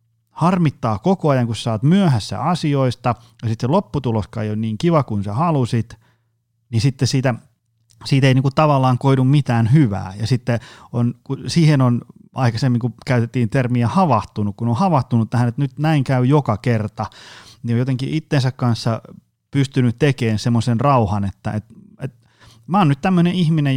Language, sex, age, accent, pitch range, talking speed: Finnish, male, 30-49, native, 115-140 Hz, 165 wpm